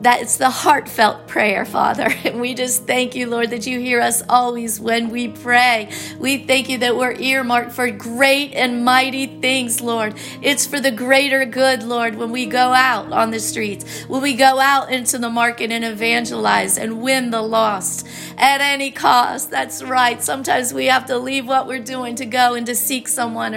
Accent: American